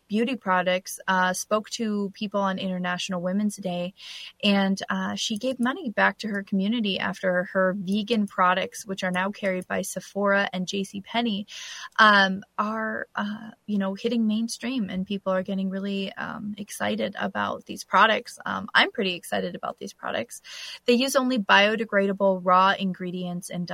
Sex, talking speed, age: female, 155 wpm, 20-39